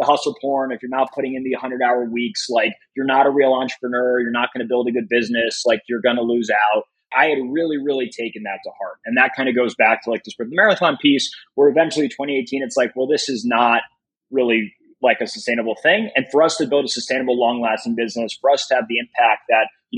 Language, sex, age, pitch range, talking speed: English, male, 20-39, 120-140 Hz, 250 wpm